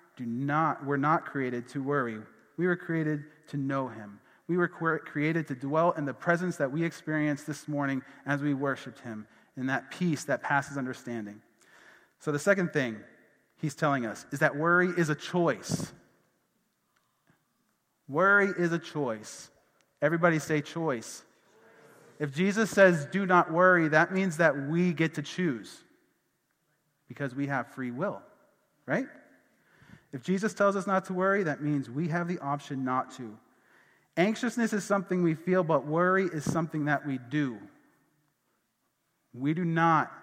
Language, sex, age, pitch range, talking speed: English, male, 30-49, 140-175 Hz, 160 wpm